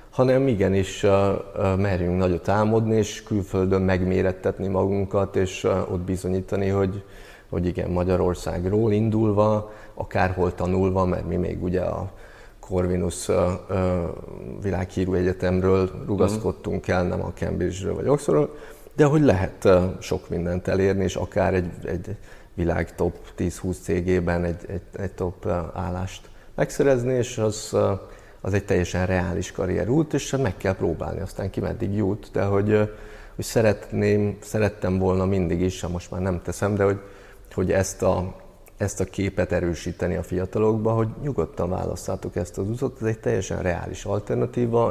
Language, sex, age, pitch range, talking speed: Hungarian, male, 30-49, 90-105 Hz, 145 wpm